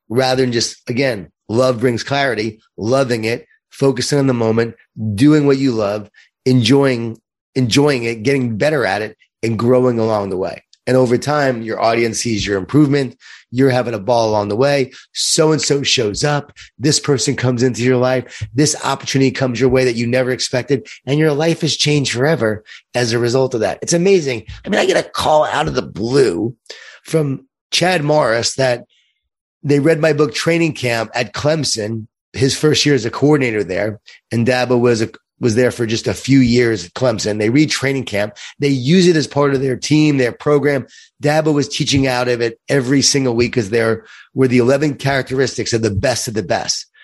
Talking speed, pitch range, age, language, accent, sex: 195 wpm, 115-145 Hz, 30-49, English, American, male